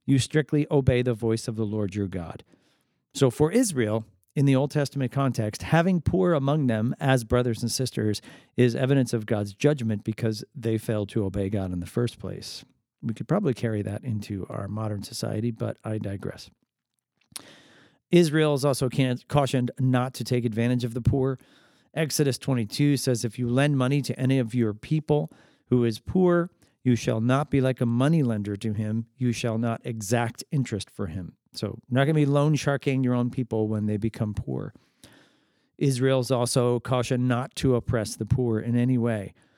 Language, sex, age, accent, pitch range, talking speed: English, male, 40-59, American, 115-135 Hz, 185 wpm